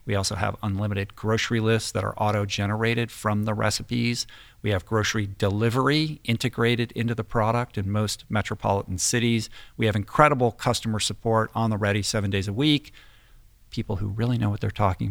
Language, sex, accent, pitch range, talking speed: English, male, American, 100-115 Hz, 170 wpm